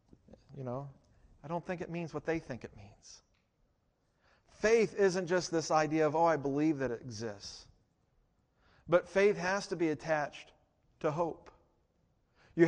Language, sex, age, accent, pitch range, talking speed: English, male, 40-59, American, 150-195 Hz, 155 wpm